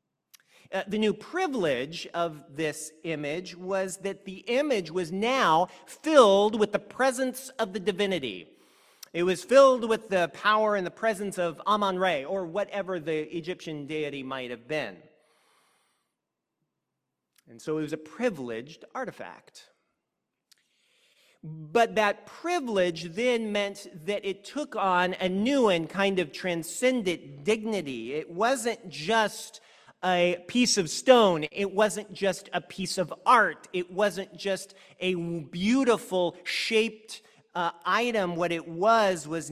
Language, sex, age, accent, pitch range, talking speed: English, male, 40-59, American, 160-210 Hz, 135 wpm